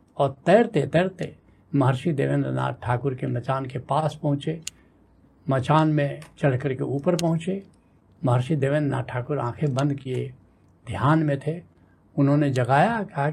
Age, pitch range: 70-89, 130-170 Hz